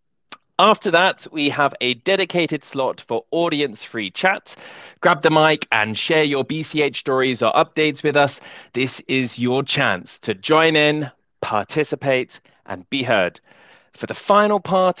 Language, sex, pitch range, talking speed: English, male, 130-175 Hz, 150 wpm